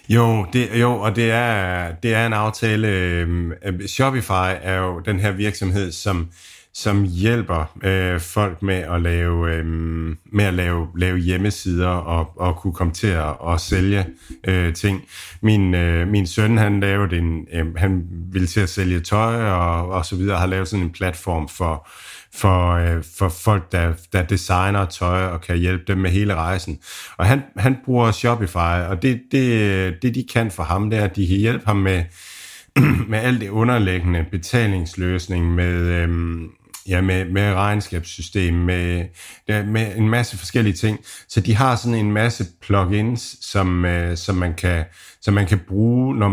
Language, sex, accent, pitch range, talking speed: Danish, male, native, 90-105 Hz, 175 wpm